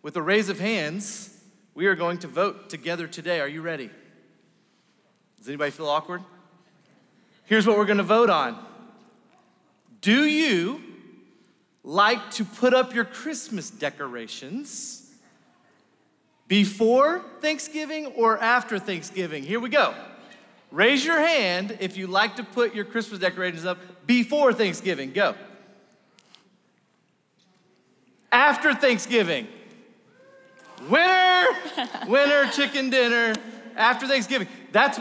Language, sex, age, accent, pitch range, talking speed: English, male, 30-49, American, 195-245 Hz, 115 wpm